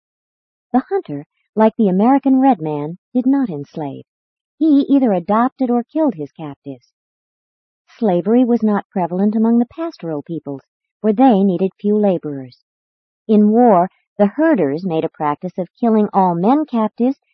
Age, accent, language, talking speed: 50-69, American, English, 145 wpm